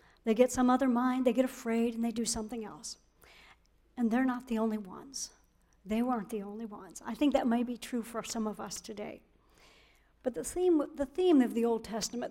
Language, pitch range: English, 225-265 Hz